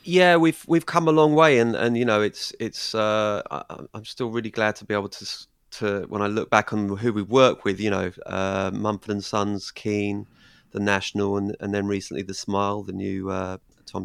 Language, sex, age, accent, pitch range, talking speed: English, male, 30-49, British, 100-110 Hz, 220 wpm